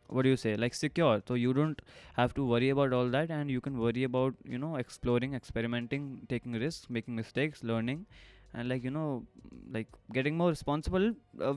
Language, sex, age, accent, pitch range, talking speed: Hindi, male, 20-39, native, 115-130 Hz, 195 wpm